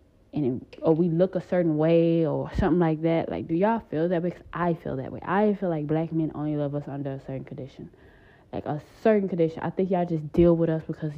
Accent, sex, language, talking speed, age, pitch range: American, female, English, 250 wpm, 20-39, 150-180 Hz